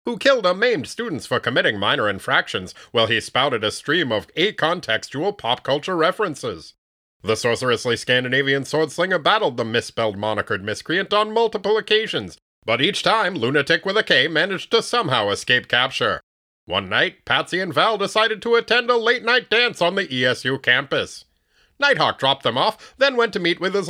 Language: English